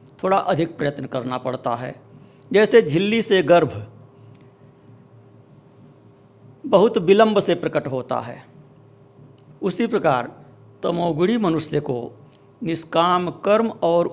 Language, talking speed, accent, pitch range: Hindi, 100 wpm, native, 135-185 Hz